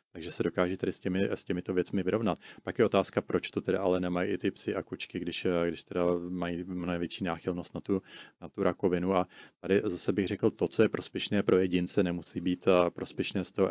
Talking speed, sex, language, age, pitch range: 225 wpm, male, Czech, 30-49, 90-95 Hz